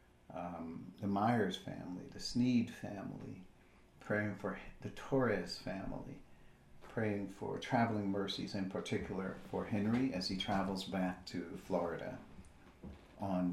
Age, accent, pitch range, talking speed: 50-69, American, 90-105 Hz, 120 wpm